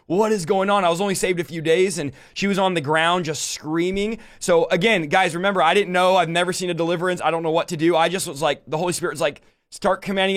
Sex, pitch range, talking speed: male, 165-215 Hz, 270 wpm